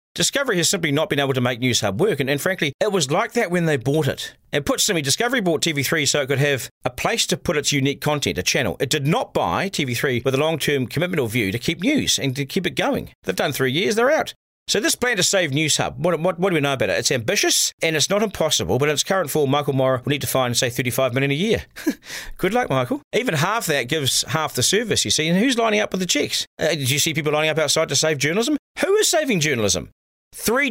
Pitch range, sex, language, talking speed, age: 140-190 Hz, male, English, 270 wpm, 40-59